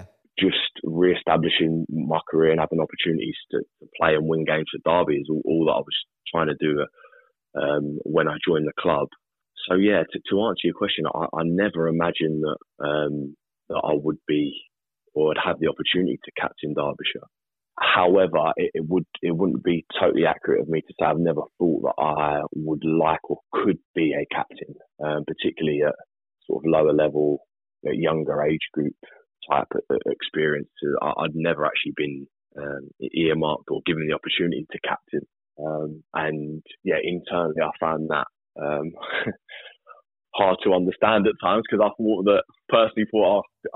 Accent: British